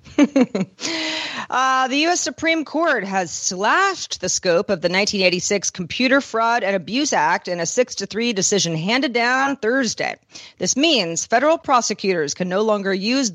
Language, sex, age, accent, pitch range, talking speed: English, female, 40-59, American, 190-255 Hz, 150 wpm